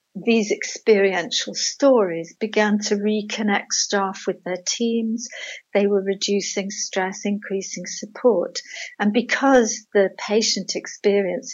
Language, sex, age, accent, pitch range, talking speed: English, female, 60-79, British, 185-225 Hz, 110 wpm